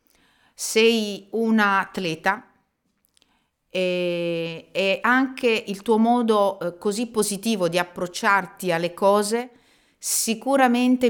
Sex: female